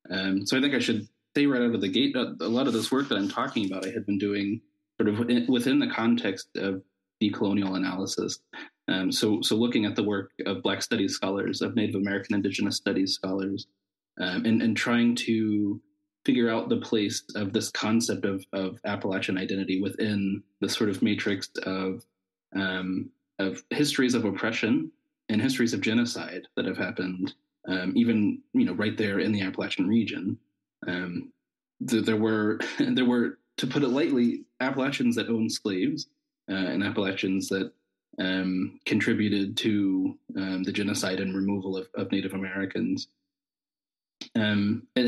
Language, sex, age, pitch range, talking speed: English, male, 20-39, 95-120 Hz, 170 wpm